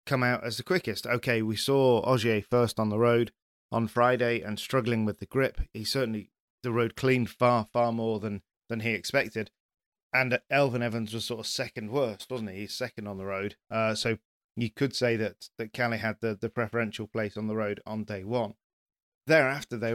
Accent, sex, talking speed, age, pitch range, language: British, male, 205 wpm, 30-49, 110-125 Hz, English